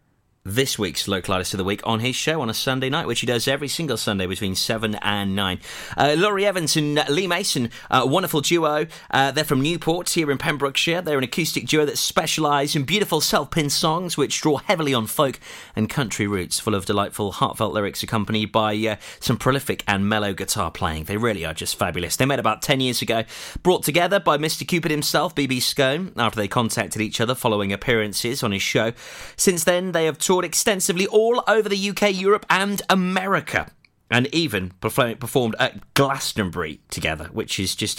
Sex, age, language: male, 30-49, English